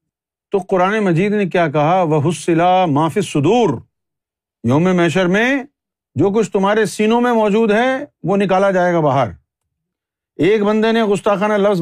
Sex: male